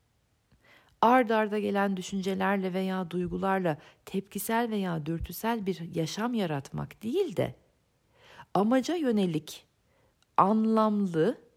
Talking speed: 90 wpm